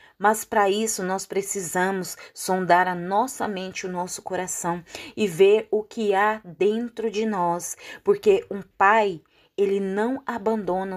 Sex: female